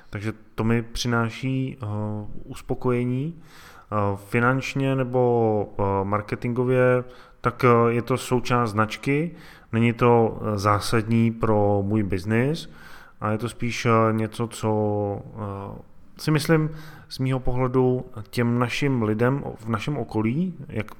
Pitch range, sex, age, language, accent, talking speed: 100-125 Hz, male, 20-39, Czech, native, 125 wpm